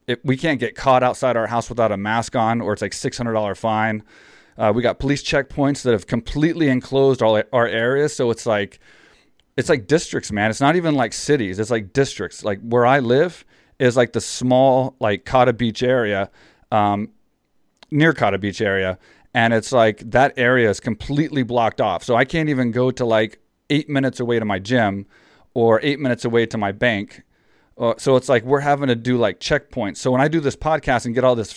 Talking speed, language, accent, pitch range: 210 wpm, English, American, 110-130 Hz